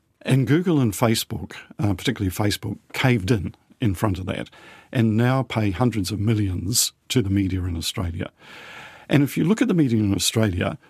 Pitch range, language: 105-130 Hz, English